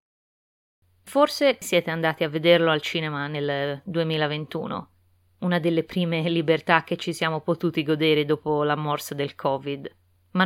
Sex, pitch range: female, 145-180 Hz